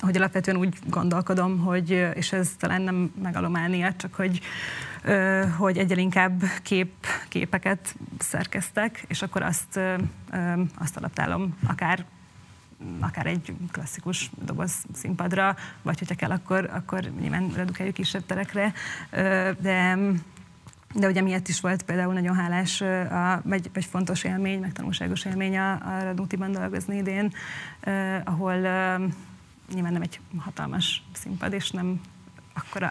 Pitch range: 180-190 Hz